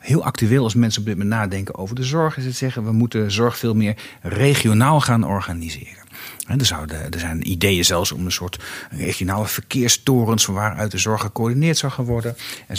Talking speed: 190 wpm